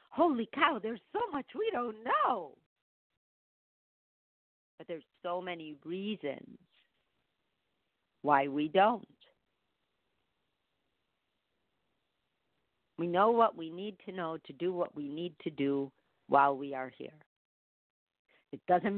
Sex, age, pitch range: female, 50-69, 155-195 Hz